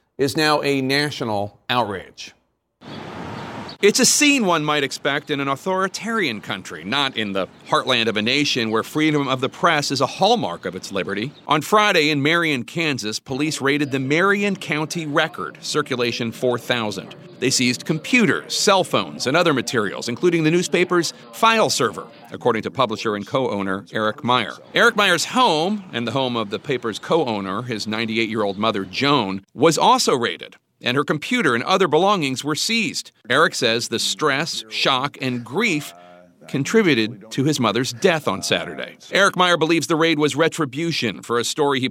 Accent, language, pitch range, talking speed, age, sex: American, English, 120-170 Hz, 165 wpm, 40-59, male